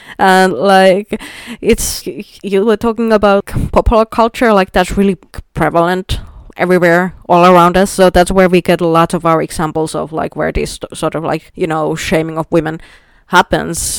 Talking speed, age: 170 wpm, 20-39